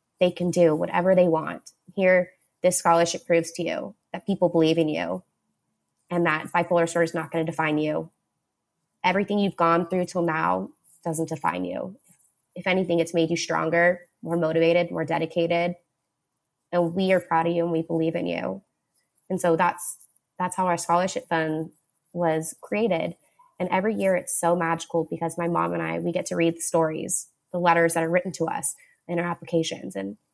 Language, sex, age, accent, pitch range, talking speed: English, female, 20-39, American, 160-180 Hz, 190 wpm